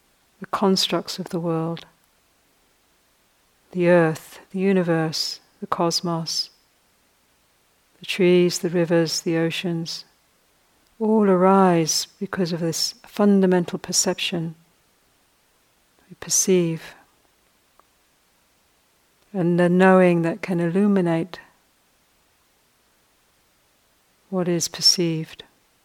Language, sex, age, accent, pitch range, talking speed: English, female, 60-79, British, 165-195 Hz, 80 wpm